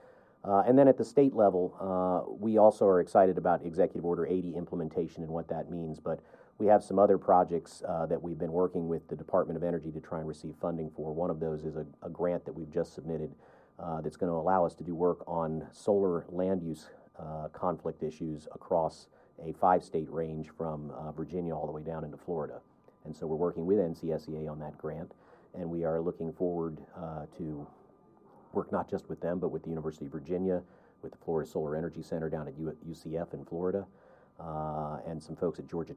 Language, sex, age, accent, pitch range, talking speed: English, male, 40-59, American, 75-85 Hz, 210 wpm